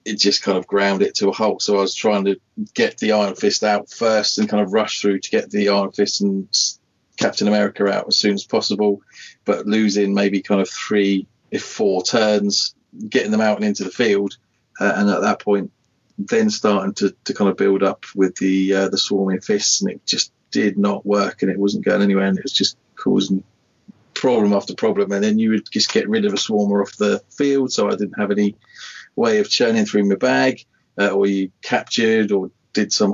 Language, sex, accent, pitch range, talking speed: English, male, British, 100-105 Hz, 225 wpm